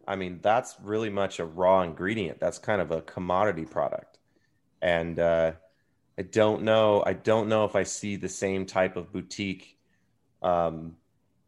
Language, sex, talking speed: English, male, 160 wpm